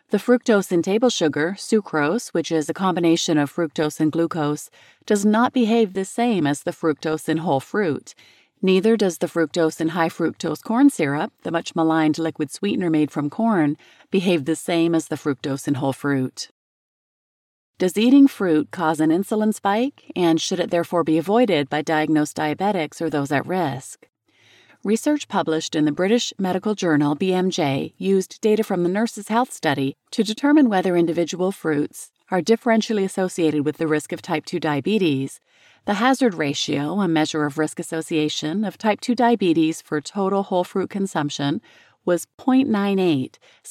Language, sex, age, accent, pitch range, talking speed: English, female, 30-49, American, 155-210 Hz, 160 wpm